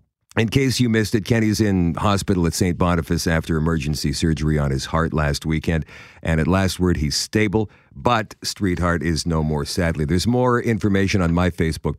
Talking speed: 185 wpm